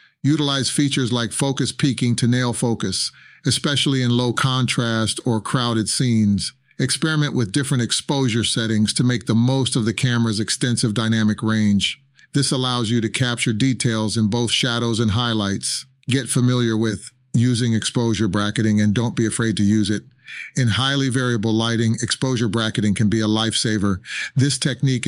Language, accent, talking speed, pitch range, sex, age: English, American, 160 wpm, 110-130 Hz, male, 40-59